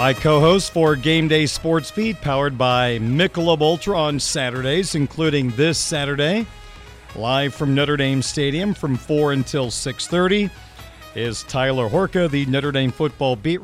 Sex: male